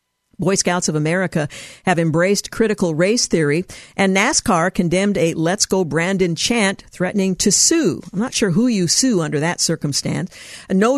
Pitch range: 165-205 Hz